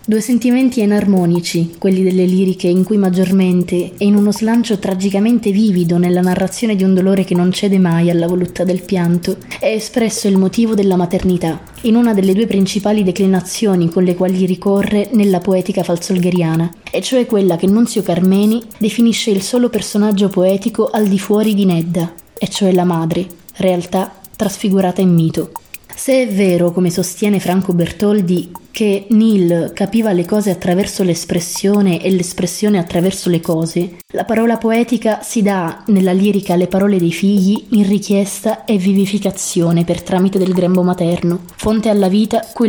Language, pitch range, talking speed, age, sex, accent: Italian, 180-210 Hz, 160 wpm, 20-39, female, native